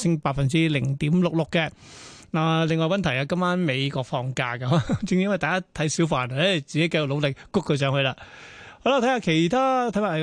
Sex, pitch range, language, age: male, 150-185 Hz, Chinese, 30-49